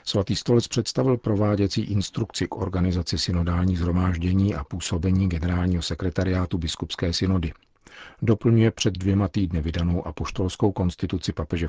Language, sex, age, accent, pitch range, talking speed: Czech, male, 50-69, native, 85-100 Hz, 120 wpm